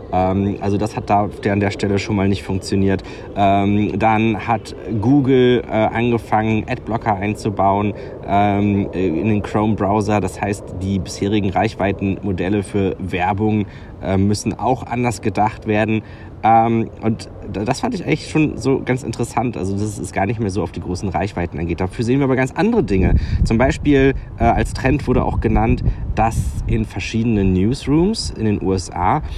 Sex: male